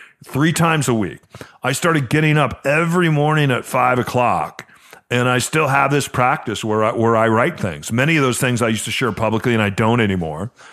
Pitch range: 110-145 Hz